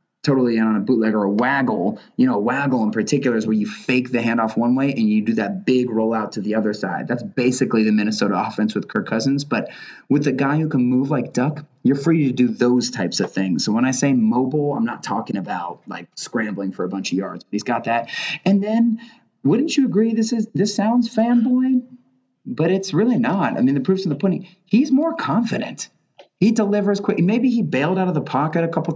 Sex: male